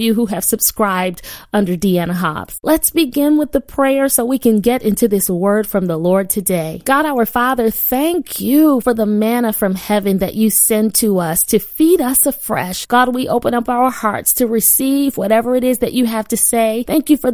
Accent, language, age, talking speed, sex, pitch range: American, English, 30-49, 210 wpm, female, 195-255 Hz